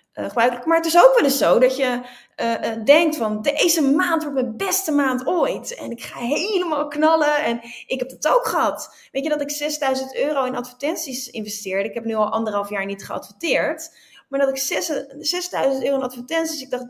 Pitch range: 230-280 Hz